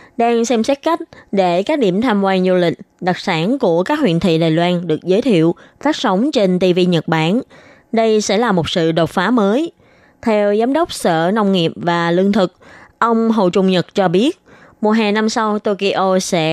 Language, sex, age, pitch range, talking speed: Vietnamese, female, 20-39, 175-225 Hz, 205 wpm